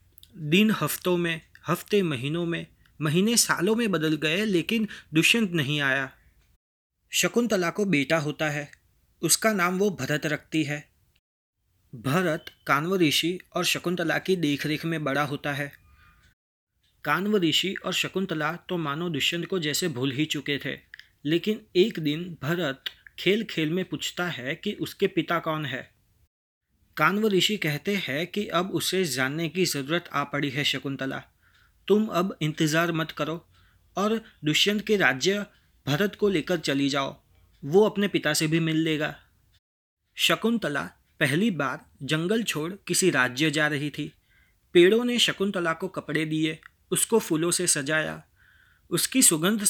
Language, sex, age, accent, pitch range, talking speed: Hindi, male, 30-49, native, 145-185 Hz, 145 wpm